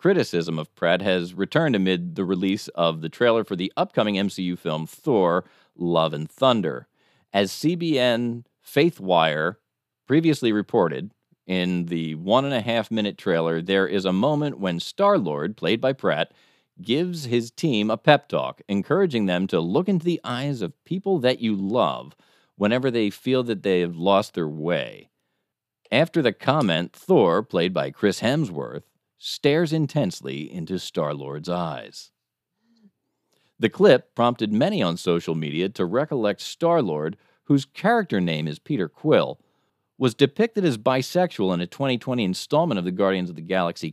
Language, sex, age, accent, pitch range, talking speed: English, male, 40-59, American, 95-150 Hz, 155 wpm